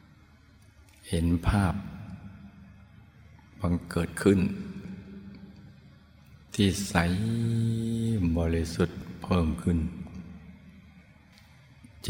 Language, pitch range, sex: Thai, 85-100 Hz, male